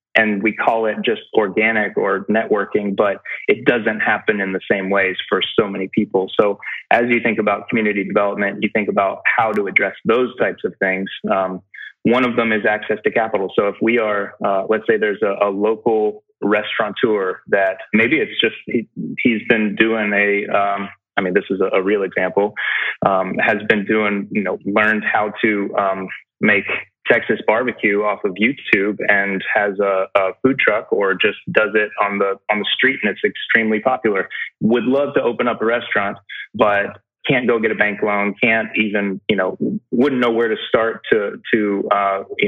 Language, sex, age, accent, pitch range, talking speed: English, male, 20-39, American, 100-115 Hz, 195 wpm